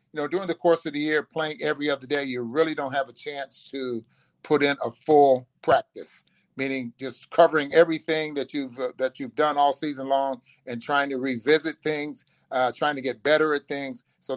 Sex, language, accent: male, English, American